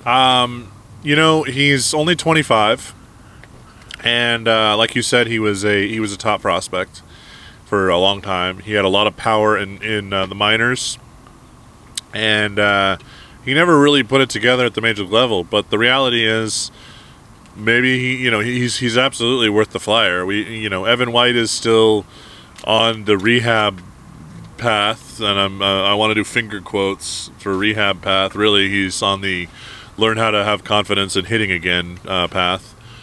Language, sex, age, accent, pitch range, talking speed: English, male, 20-39, American, 100-120 Hz, 175 wpm